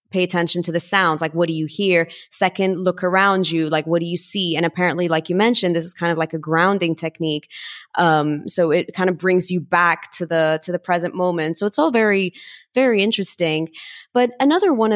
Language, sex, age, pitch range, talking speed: English, female, 20-39, 165-195 Hz, 220 wpm